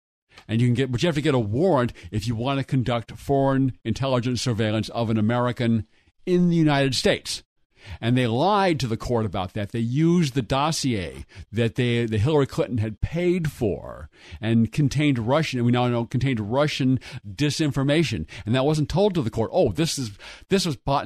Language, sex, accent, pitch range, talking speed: English, male, American, 115-150 Hz, 195 wpm